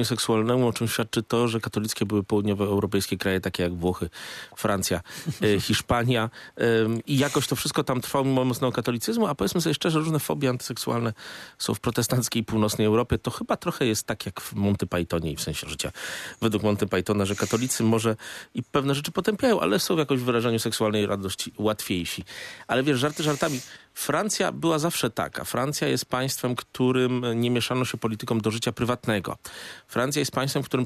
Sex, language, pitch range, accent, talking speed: male, Polish, 110-145 Hz, native, 175 wpm